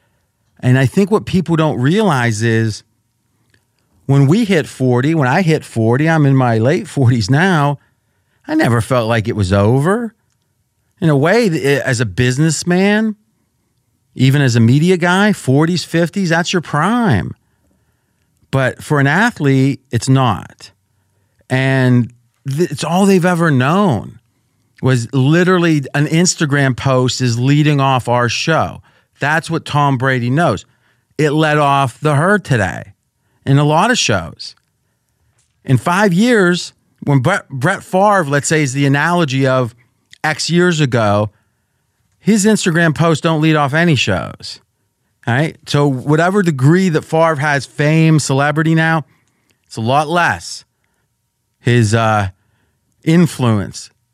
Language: English